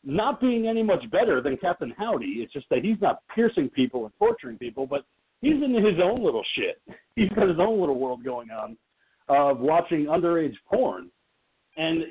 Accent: American